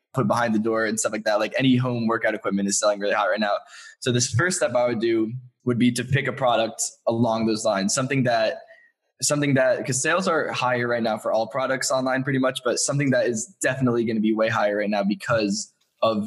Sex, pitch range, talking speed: male, 110-125 Hz, 240 wpm